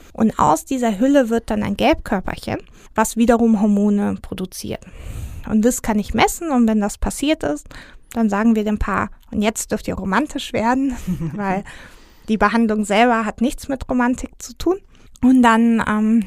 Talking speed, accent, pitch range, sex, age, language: 170 wpm, German, 210-240 Hz, female, 20-39, German